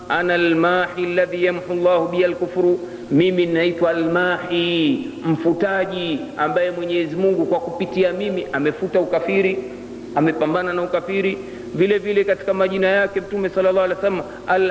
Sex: male